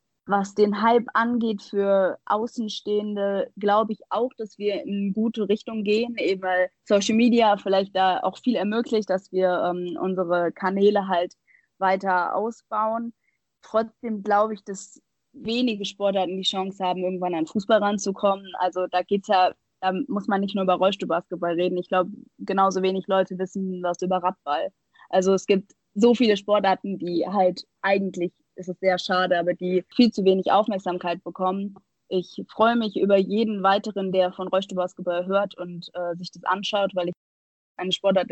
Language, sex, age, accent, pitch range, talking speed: German, female, 20-39, German, 180-210 Hz, 165 wpm